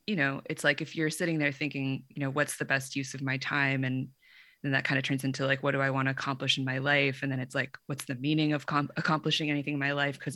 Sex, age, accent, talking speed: female, 20-39, American, 290 wpm